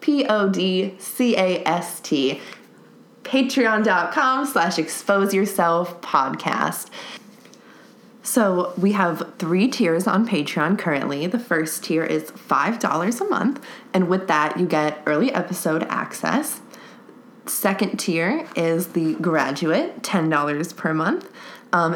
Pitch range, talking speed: 165-230 Hz, 100 wpm